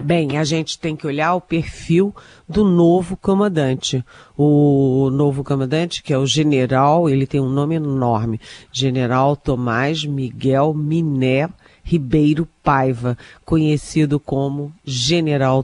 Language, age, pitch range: Portuguese, 40-59, 135-170 Hz